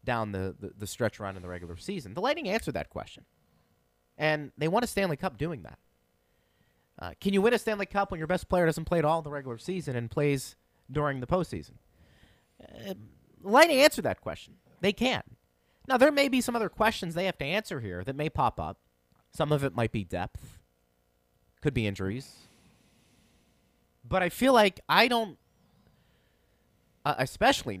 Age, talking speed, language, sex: 30-49, 190 wpm, English, male